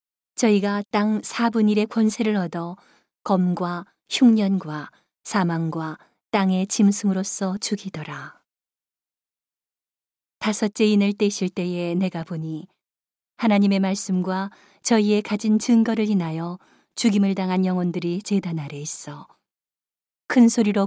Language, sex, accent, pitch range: Korean, female, native, 180-210 Hz